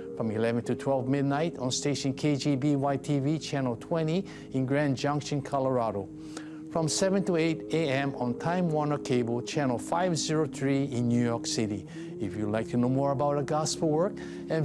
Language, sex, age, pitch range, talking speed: English, male, 60-79, 125-160 Hz, 165 wpm